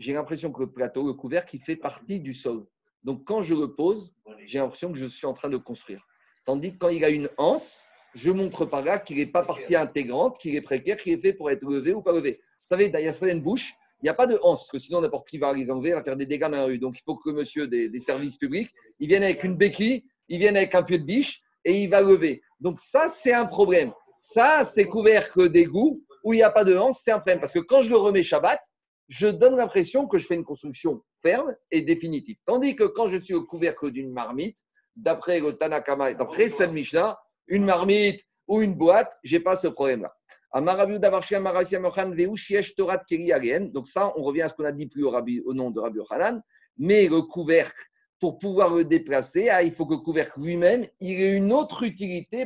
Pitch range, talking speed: 150-220 Hz, 235 wpm